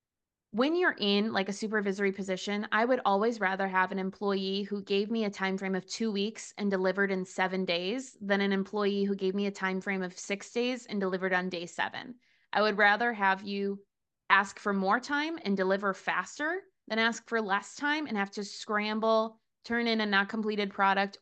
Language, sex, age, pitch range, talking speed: English, female, 20-39, 195-255 Hz, 200 wpm